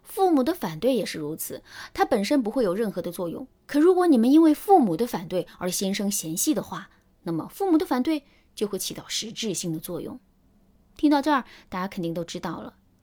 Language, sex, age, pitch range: Chinese, female, 20-39, 185-270 Hz